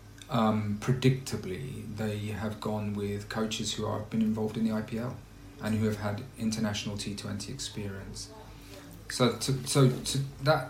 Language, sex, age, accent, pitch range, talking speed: English, male, 30-49, British, 100-115 Hz, 150 wpm